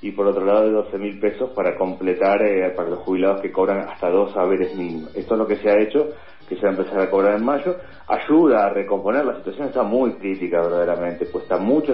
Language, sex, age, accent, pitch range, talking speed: Spanish, male, 40-59, Argentinian, 95-125 Hz, 230 wpm